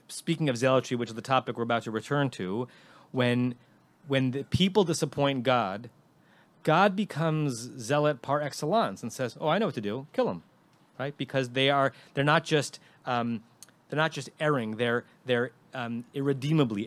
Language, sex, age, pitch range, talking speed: English, male, 30-49, 115-150 Hz, 175 wpm